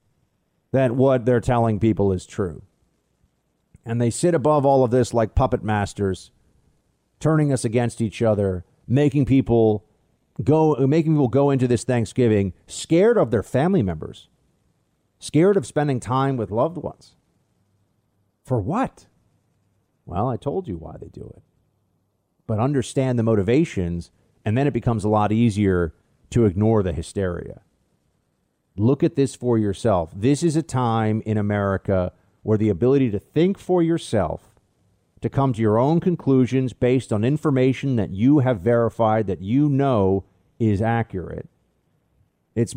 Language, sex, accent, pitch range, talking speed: English, male, American, 105-140 Hz, 145 wpm